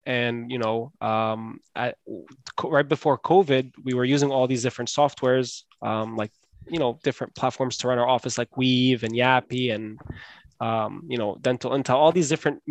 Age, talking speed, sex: 20-39, 175 wpm, male